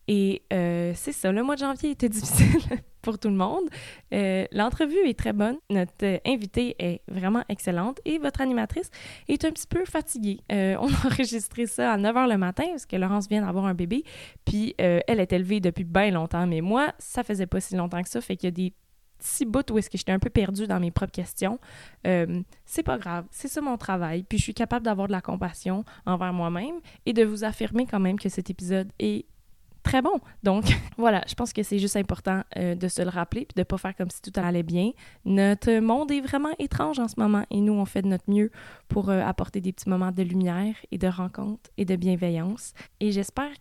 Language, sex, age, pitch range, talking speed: French, female, 20-39, 185-230 Hz, 230 wpm